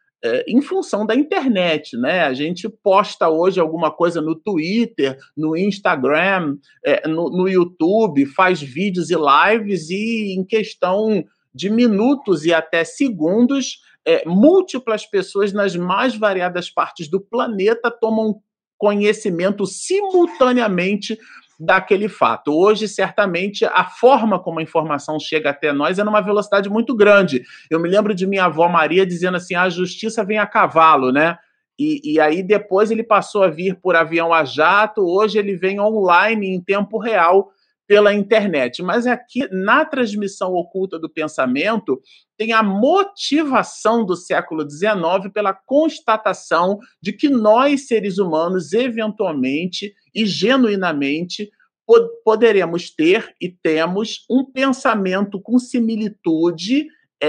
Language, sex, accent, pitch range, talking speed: Portuguese, male, Brazilian, 180-230 Hz, 130 wpm